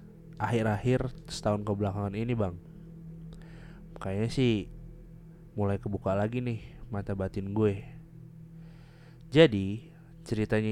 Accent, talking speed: native, 90 wpm